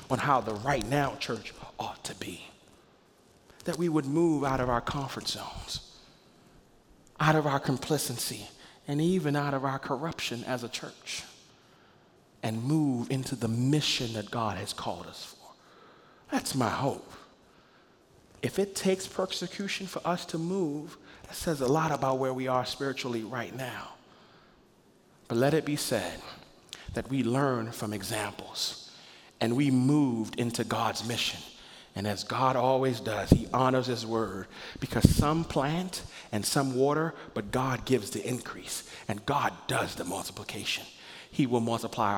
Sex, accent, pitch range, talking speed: male, American, 115-145 Hz, 155 wpm